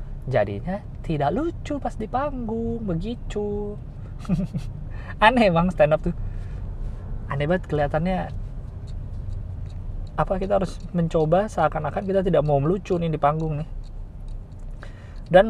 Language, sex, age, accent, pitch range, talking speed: Indonesian, male, 20-39, native, 105-165 Hz, 110 wpm